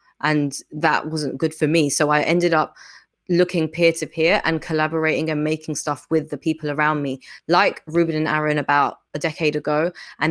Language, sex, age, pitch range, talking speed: English, female, 20-39, 150-175 Hz, 180 wpm